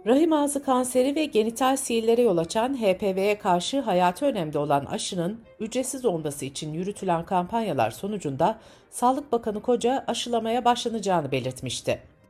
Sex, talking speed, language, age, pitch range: female, 125 wpm, Turkish, 60-79, 160-245 Hz